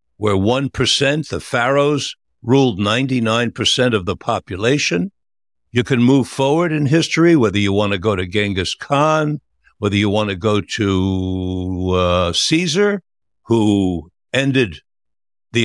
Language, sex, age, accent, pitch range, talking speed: English, male, 60-79, American, 100-145 Hz, 130 wpm